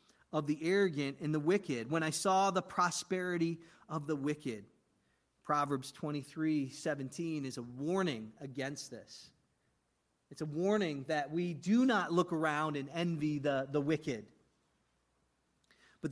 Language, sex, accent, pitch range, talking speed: English, male, American, 155-220 Hz, 140 wpm